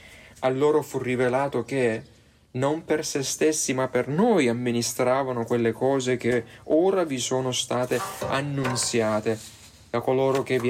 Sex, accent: male, native